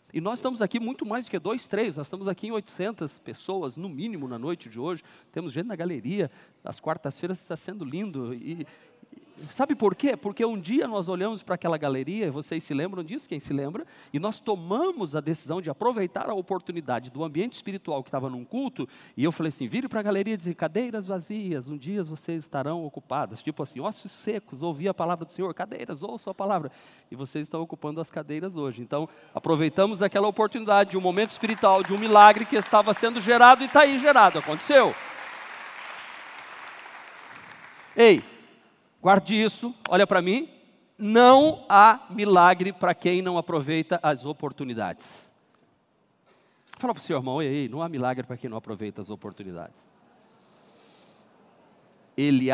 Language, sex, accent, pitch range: Portuguese, male, Brazilian, 155-215 Hz